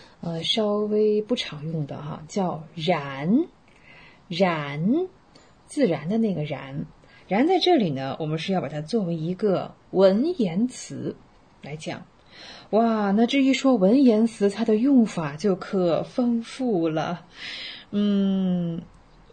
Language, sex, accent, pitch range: Chinese, female, native, 180-250 Hz